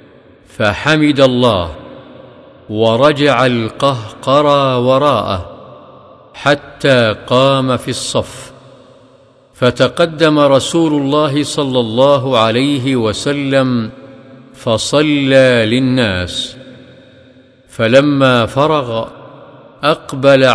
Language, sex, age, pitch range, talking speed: Arabic, male, 50-69, 125-140 Hz, 60 wpm